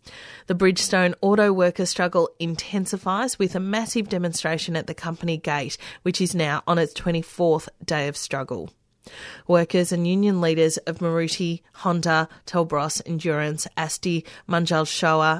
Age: 30-49